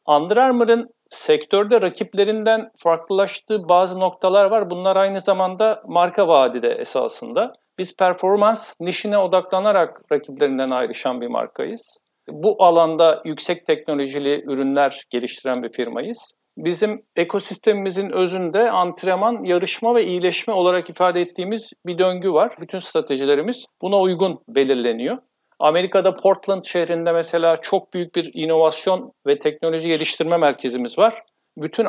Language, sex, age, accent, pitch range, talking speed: Turkish, male, 50-69, native, 165-200 Hz, 115 wpm